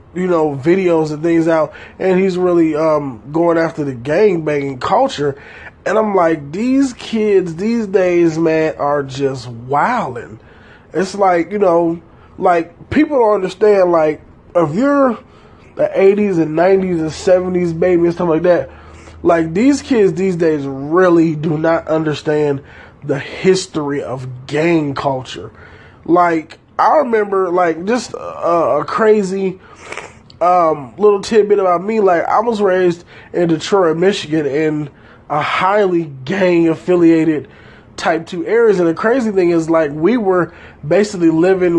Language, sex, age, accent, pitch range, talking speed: English, male, 20-39, American, 155-195 Hz, 145 wpm